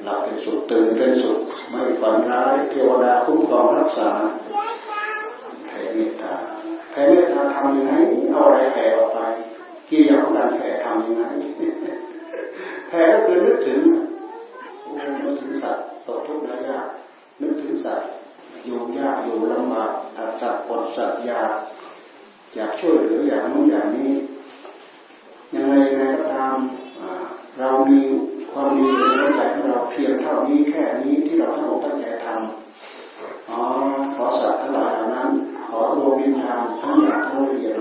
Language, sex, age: Thai, male, 40-59